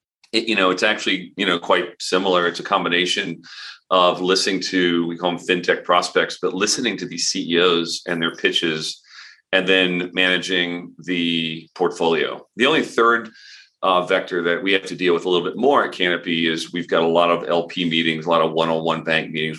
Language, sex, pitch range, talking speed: English, male, 80-90 Hz, 200 wpm